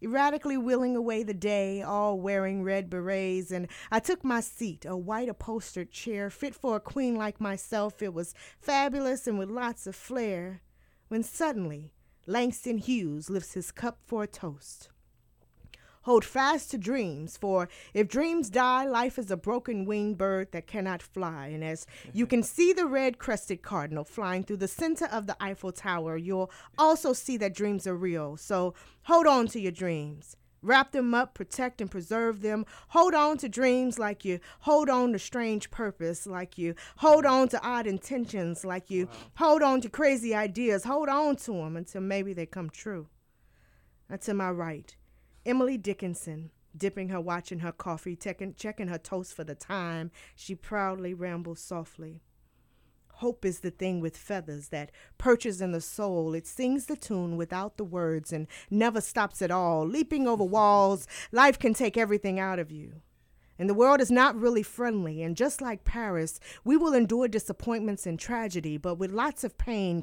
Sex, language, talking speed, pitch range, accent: female, English, 175 wpm, 180-240 Hz, American